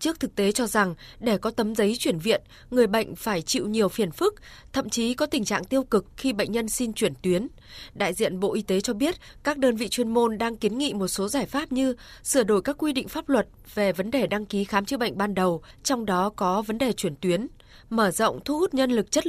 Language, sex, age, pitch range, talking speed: Vietnamese, female, 20-39, 190-260 Hz, 255 wpm